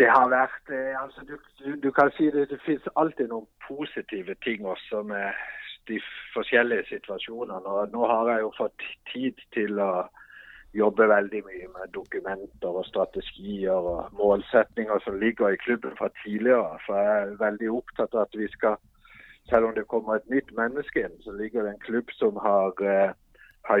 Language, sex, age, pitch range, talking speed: Danish, male, 50-69, 100-120 Hz, 170 wpm